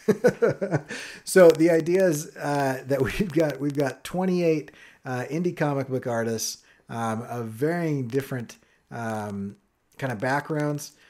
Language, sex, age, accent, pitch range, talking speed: English, male, 30-49, American, 115-155 Hz, 130 wpm